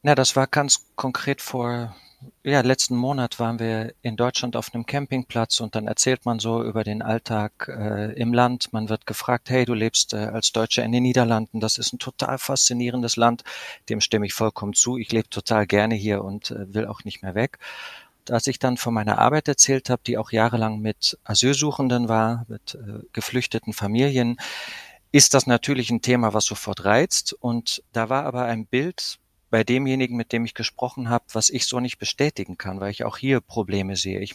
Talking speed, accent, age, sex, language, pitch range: 200 wpm, German, 40-59, male, German, 105-125 Hz